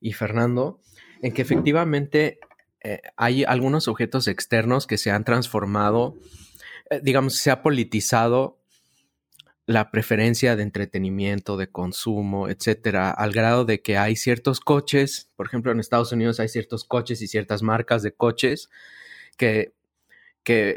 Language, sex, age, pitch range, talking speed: Spanish, male, 30-49, 105-125 Hz, 140 wpm